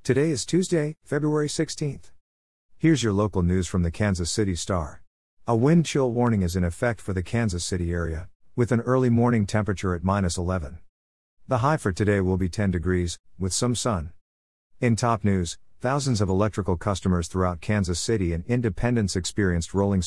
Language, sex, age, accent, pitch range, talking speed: English, male, 50-69, American, 90-115 Hz, 175 wpm